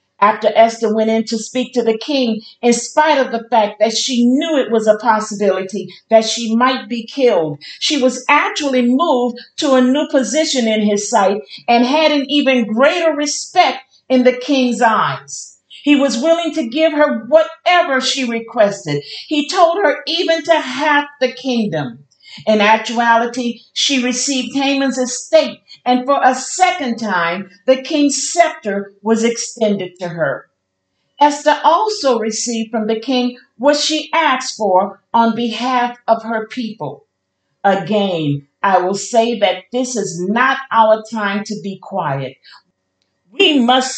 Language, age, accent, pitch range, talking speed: English, 50-69, American, 205-275 Hz, 155 wpm